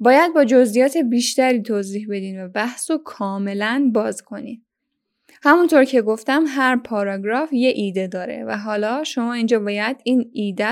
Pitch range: 210-275 Hz